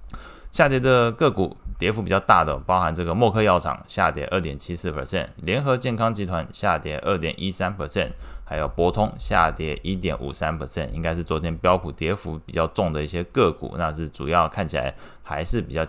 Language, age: Chinese, 20-39